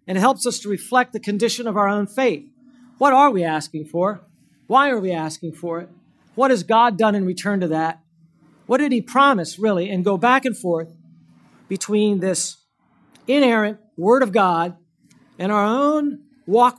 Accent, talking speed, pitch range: American, 180 wpm, 160-225 Hz